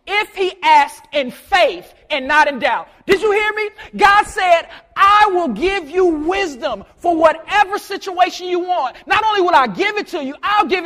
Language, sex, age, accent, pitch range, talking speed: English, male, 30-49, American, 275-365 Hz, 195 wpm